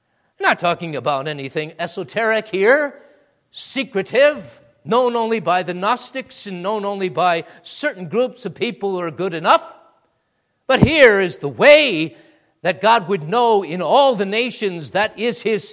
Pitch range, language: 145-220 Hz, English